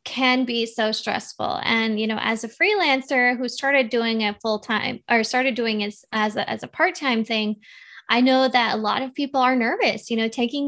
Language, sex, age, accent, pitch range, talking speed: English, female, 20-39, American, 220-255 Hz, 220 wpm